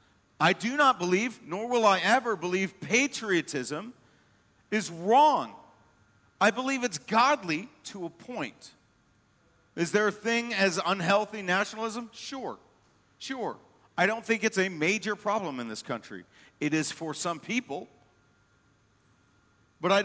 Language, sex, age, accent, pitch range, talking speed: English, male, 50-69, American, 160-225 Hz, 135 wpm